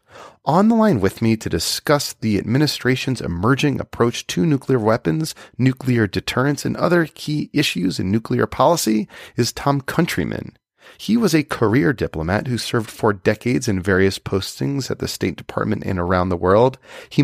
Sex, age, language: male, 30-49, English